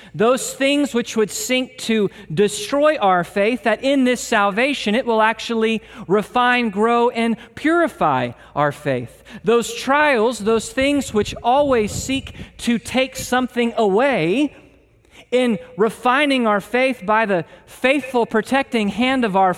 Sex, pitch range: male, 205-260 Hz